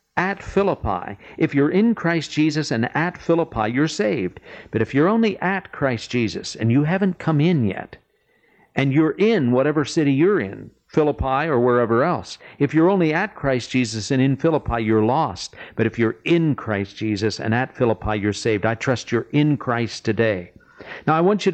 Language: English